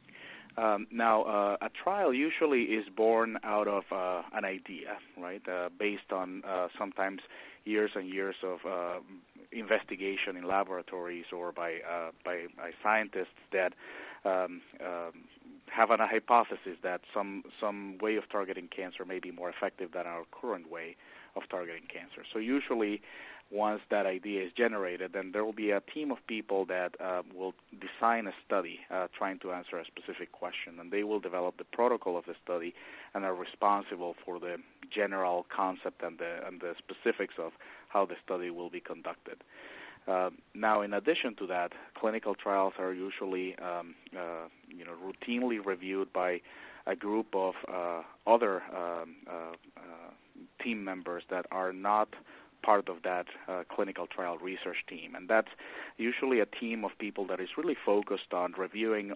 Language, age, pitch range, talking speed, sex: English, 30-49, 90-105 Hz, 165 wpm, male